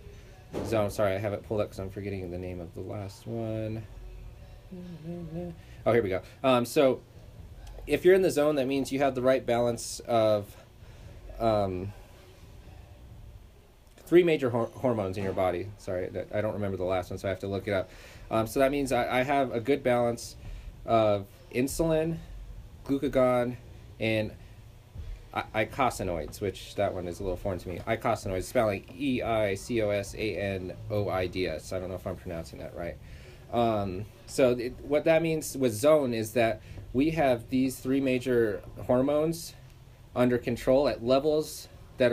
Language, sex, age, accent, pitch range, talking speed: English, male, 30-49, American, 100-125 Hz, 180 wpm